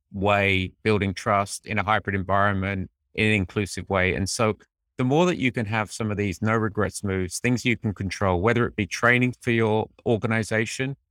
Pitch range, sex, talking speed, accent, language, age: 95-115 Hz, male, 195 wpm, British, English, 30-49